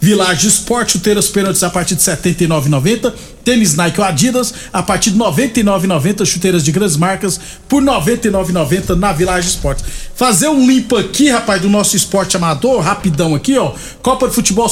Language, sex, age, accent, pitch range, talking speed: Portuguese, male, 50-69, Brazilian, 185-225 Hz, 165 wpm